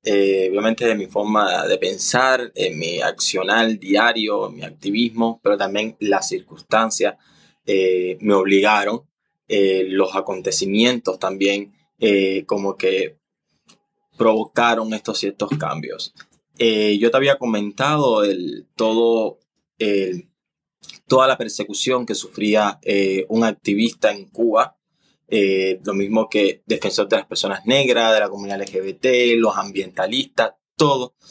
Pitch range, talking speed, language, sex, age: 100-125 Hz, 115 wpm, Spanish, male, 20-39